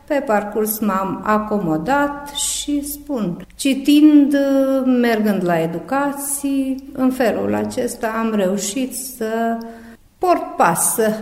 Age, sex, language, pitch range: 50-69, female, Romanian, 195-255 Hz